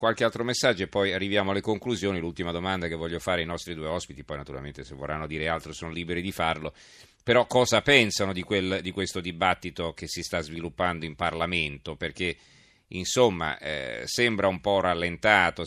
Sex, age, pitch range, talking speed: male, 40-59, 80-100 Hz, 180 wpm